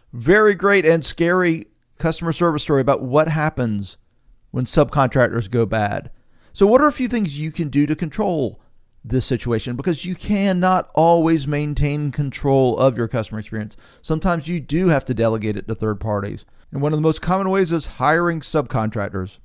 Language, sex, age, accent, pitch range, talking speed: English, male, 40-59, American, 120-165 Hz, 175 wpm